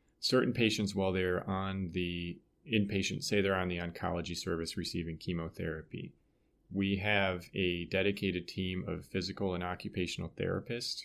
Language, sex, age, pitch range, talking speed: English, male, 30-49, 85-100 Hz, 135 wpm